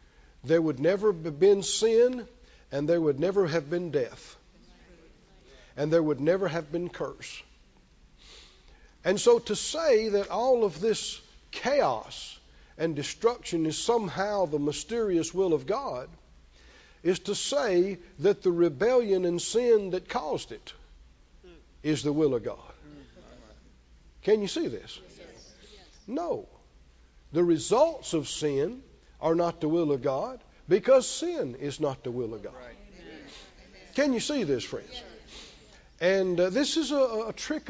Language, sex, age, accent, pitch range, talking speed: English, male, 50-69, American, 155-230 Hz, 140 wpm